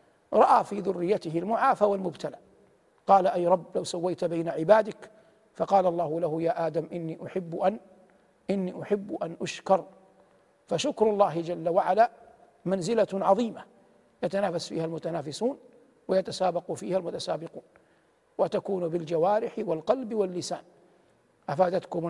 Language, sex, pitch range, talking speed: Arabic, male, 170-220 Hz, 110 wpm